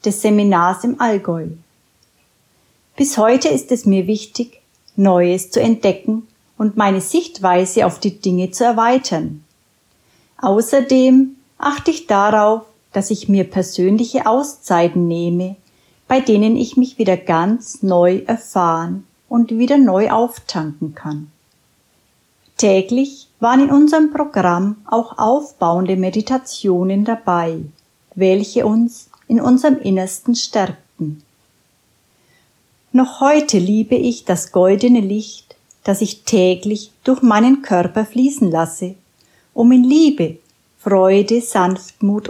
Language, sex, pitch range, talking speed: German, female, 185-240 Hz, 110 wpm